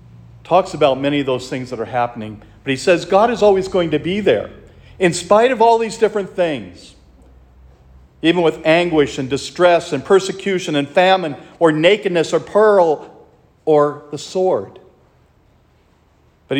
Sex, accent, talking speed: male, American, 155 wpm